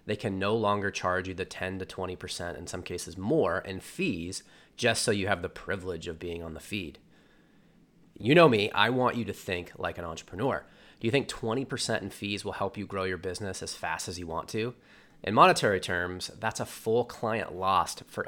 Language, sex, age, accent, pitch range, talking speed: English, male, 30-49, American, 90-110 Hz, 215 wpm